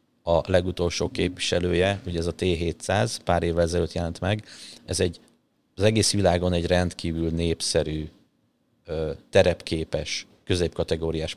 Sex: male